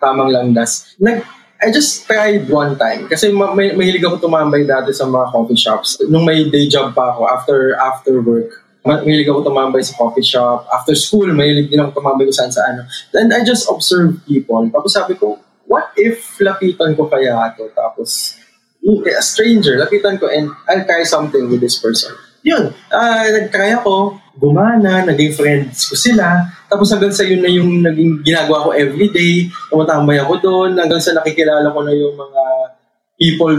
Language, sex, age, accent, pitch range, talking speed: English, male, 20-39, Filipino, 145-205 Hz, 180 wpm